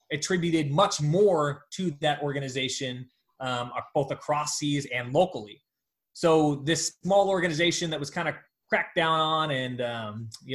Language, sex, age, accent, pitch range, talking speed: English, male, 20-39, American, 135-170 Hz, 150 wpm